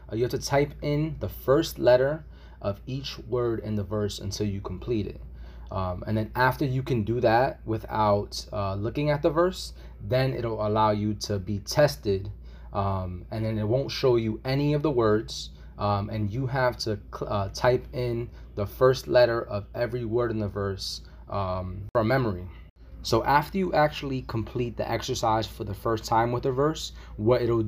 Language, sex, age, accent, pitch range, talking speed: English, male, 20-39, American, 100-125 Hz, 185 wpm